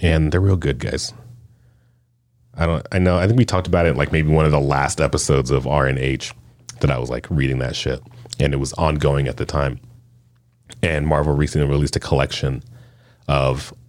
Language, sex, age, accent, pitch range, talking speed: English, male, 30-49, American, 75-115 Hz, 205 wpm